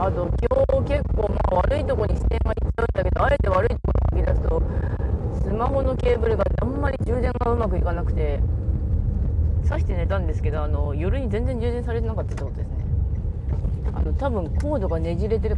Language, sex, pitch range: Japanese, female, 75-95 Hz